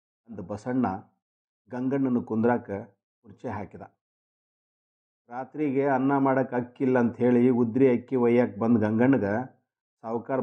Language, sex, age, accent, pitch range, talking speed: Kannada, male, 50-69, native, 105-125 Hz, 105 wpm